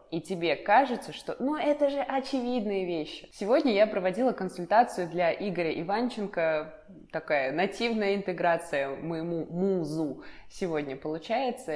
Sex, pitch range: female, 150-205 Hz